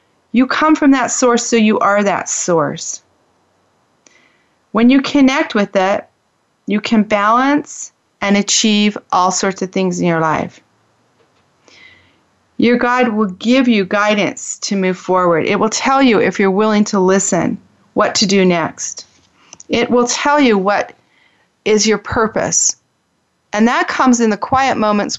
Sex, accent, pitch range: female, American, 175-225 Hz